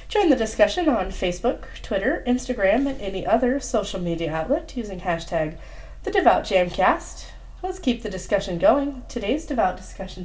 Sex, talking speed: female, 140 wpm